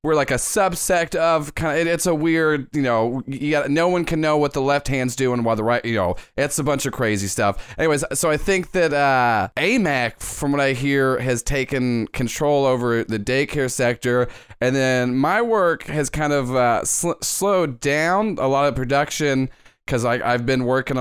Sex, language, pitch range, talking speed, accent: male, English, 120-150 Hz, 195 wpm, American